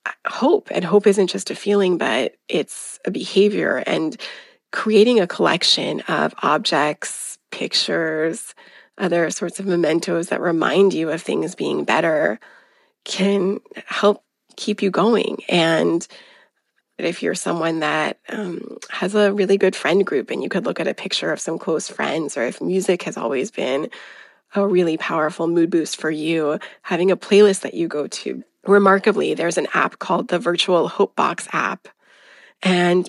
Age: 20-39